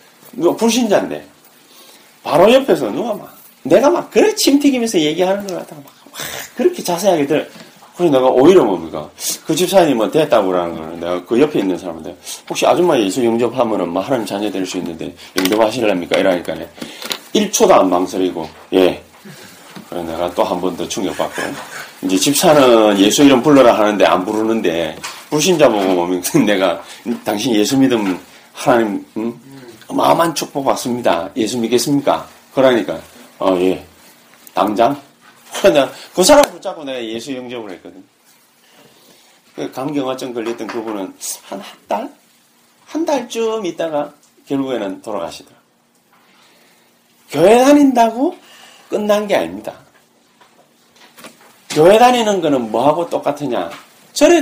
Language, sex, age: Korean, male, 30-49